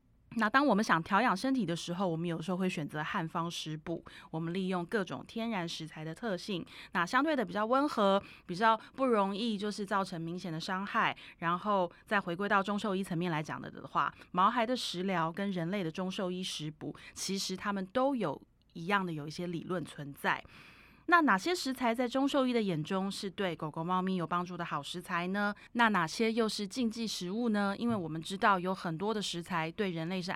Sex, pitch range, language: female, 170-210 Hz, Chinese